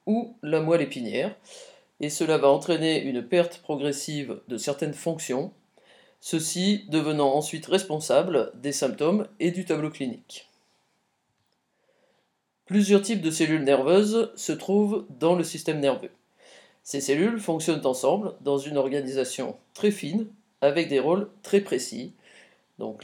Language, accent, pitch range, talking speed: French, French, 140-195 Hz, 130 wpm